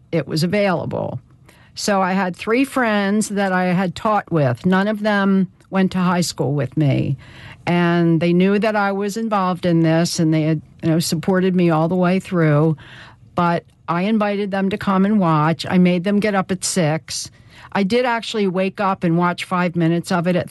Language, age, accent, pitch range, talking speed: English, 50-69, American, 160-190 Hz, 195 wpm